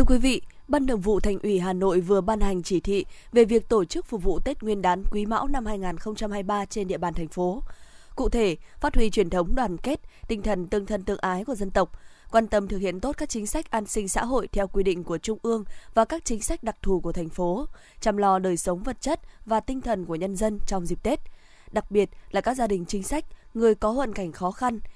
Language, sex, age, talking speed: Vietnamese, female, 20-39, 255 wpm